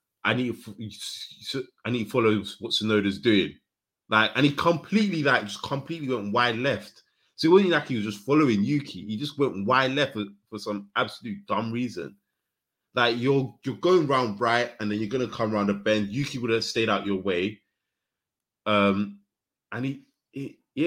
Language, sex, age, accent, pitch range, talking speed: English, male, 20-39, British, 100-125 Hz, 180 wpm